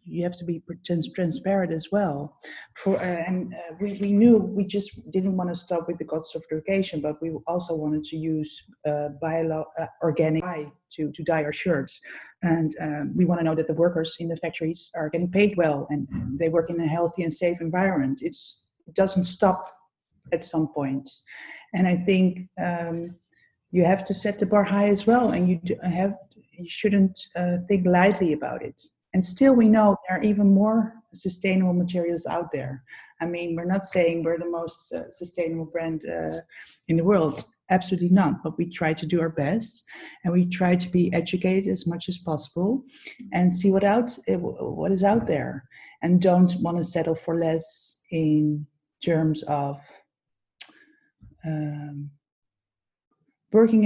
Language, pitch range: English, 160-190 Hz